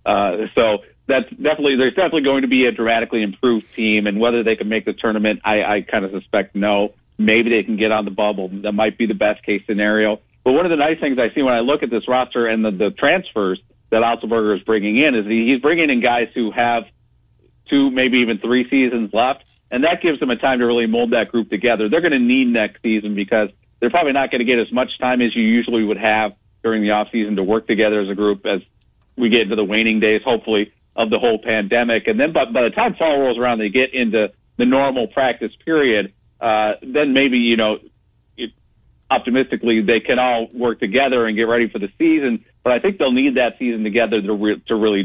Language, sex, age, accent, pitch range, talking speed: English, male, 40-59, American, 110-125 Hz, 235 wpm